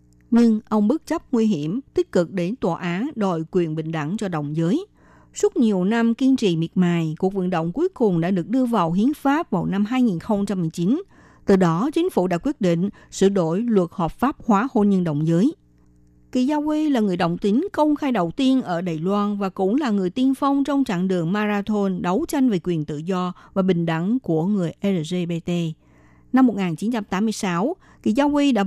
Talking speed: 205 wpm